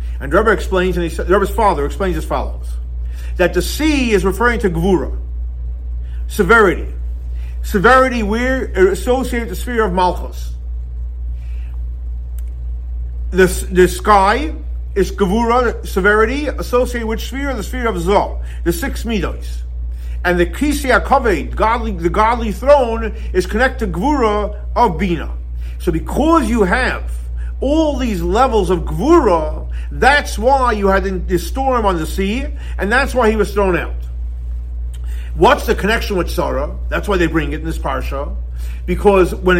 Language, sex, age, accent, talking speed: English, male, 50-69, American, 145 wpm